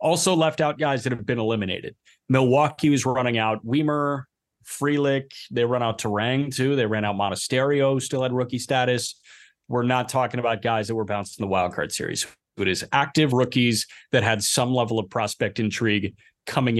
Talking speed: 180 wpm